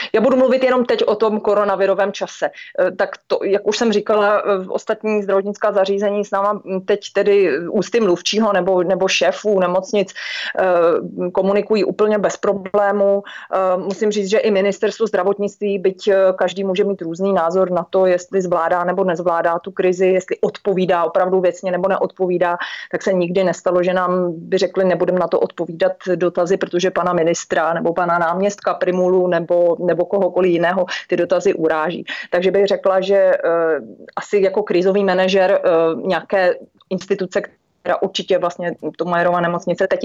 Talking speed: 155 wpm